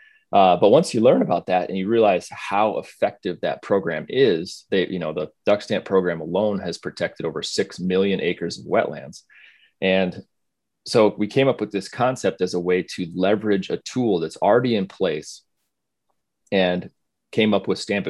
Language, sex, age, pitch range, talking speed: English, male, 30-49, 90-115 Hz, 180 wpm